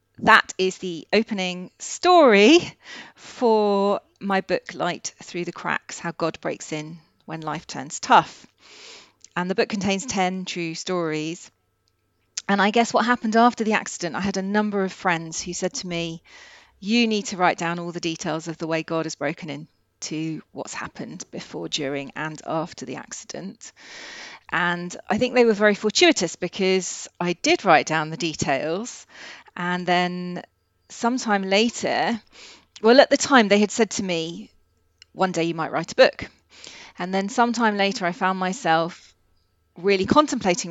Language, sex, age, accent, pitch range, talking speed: English, female, 40-59, British, 165-210 Hz, 165 wpm